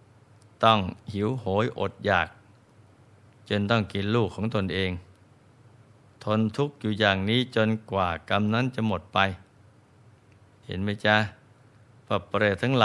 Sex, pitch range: male, 100-115 Hz